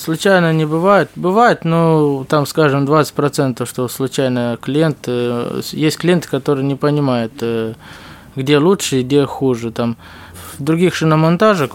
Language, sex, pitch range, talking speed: Russian, male, 130-155 Hz, 125 wpm